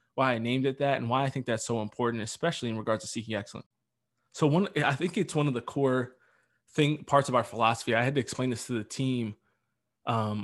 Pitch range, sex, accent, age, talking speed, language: 110-130 Hz, male, American, 20-39, 235 wpm, English